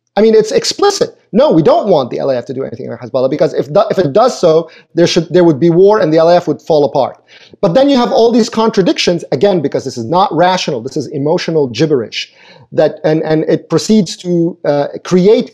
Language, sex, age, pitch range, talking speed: English, male, 30-49, 150-215 Hz, 230 wpm